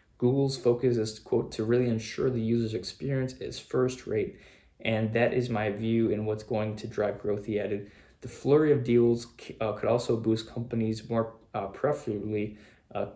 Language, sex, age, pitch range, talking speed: English, male, 20-39, 105-120 Hz, 180 wpm